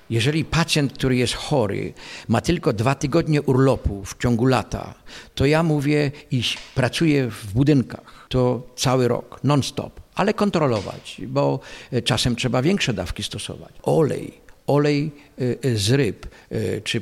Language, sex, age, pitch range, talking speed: Polish, male, 50-69, 110-130 Hz, 135 wpm